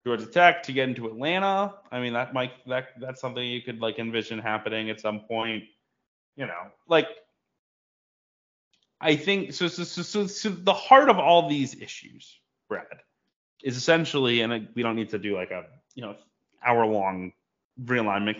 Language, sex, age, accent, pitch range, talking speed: English, male, 20-39, American, 110-145 Hz, 170 wpm